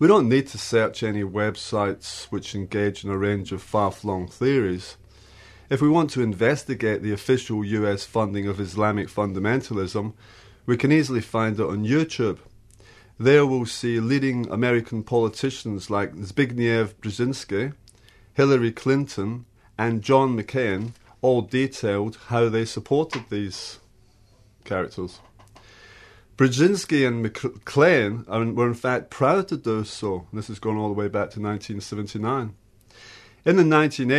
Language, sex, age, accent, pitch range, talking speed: English, male, 30-49, British, 105-125 Hz, 130 wpm